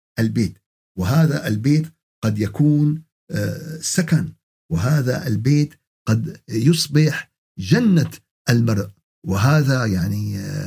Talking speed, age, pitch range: 80 wpm, 50-69, 110-160 Hz